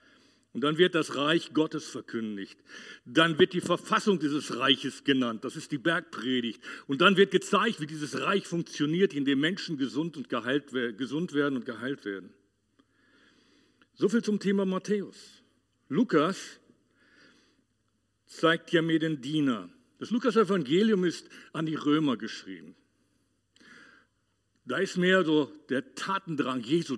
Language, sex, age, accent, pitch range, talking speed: German, male, 50-69, German, 145-185 Hz, 135 wpm